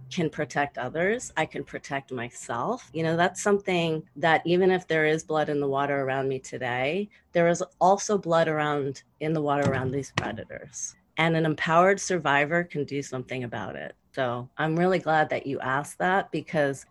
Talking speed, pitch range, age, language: 185 wpm, 135-160 Hz, 30-49, English